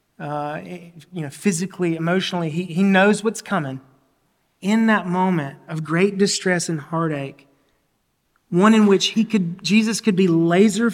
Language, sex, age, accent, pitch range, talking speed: English, male, 30-49, American, 150-190 Hz, 150 wpm